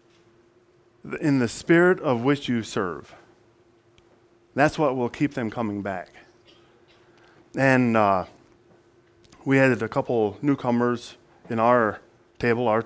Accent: American